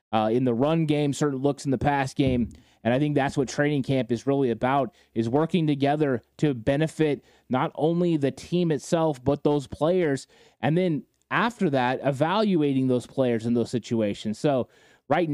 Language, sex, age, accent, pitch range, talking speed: English, male, 20-39, American, 130-155 Hz, 180 wpm